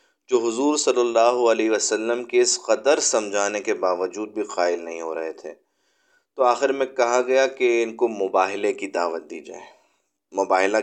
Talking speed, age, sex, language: 175 wpm, 30-49, male, Urdu